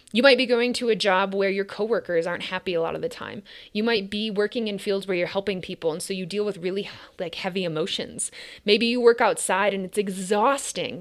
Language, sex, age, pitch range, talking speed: English, female, 20-39, 185-235 Hz, 235 wpm